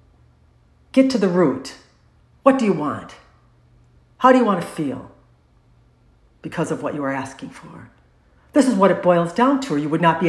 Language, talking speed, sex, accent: English, 190 wpm, female, American